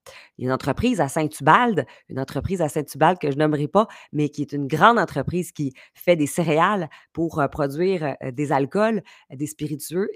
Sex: female